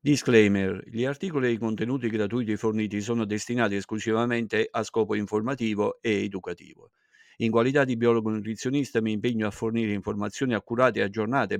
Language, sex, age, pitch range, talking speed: Italian, male, 50-69, 105-120 Hz, 150 wpm